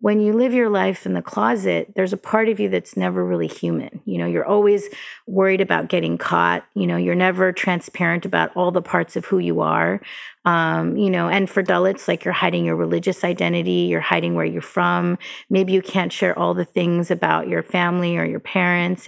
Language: English